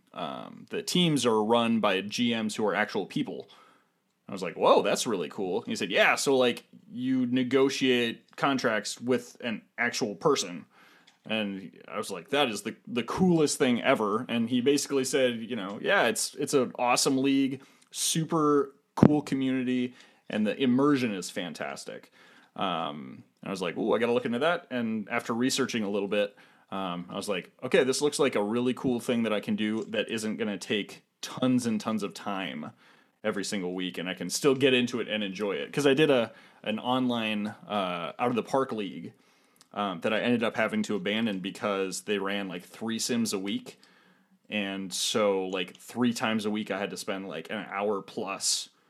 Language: English